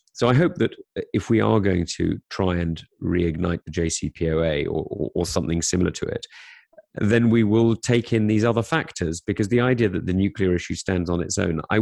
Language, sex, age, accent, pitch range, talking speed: English, male, 40-59, British, 85-105 Hz, 210 wpm